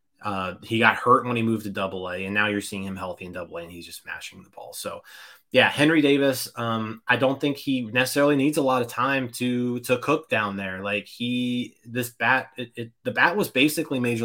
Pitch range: 100-125 Hz